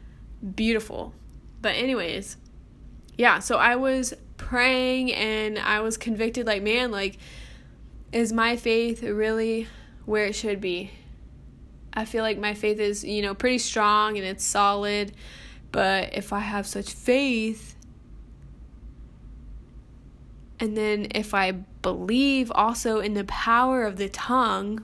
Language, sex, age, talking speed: English, female, 10-29, 130 wpm